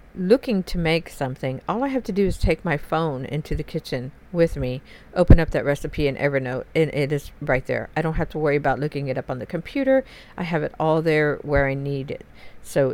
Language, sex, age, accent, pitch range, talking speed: English, female, 50-69, American, 145-180 Hz, 235 wpm